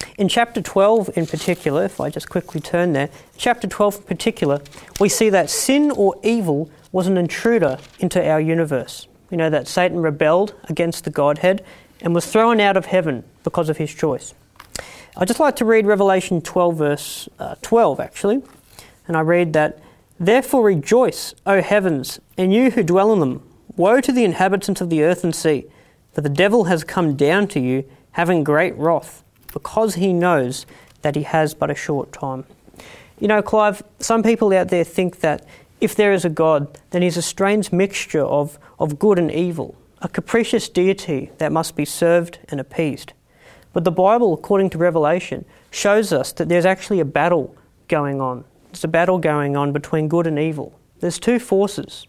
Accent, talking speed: Australian, 185 wpm